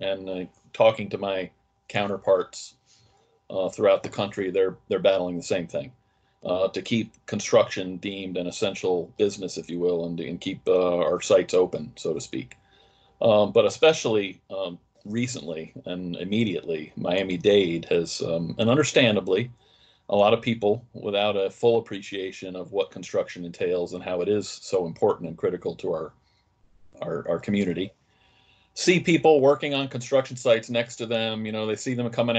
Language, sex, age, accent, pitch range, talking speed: English, male, 40-59, American, 95-120 Hz, 165 wpm